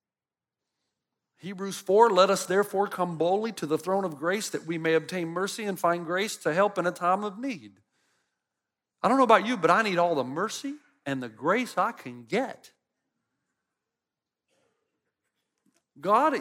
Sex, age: male, 50-69